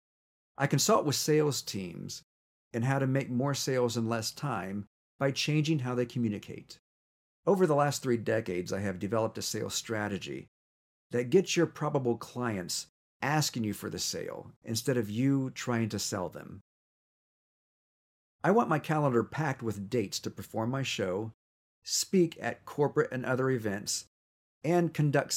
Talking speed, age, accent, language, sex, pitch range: 155 wpm, 50-69, American, English, male, 105-145 Hz